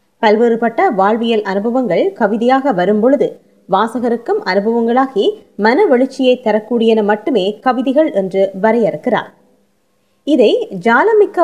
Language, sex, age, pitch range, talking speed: Tamil, female, 20-39, 215-300 Hz, 90 wpm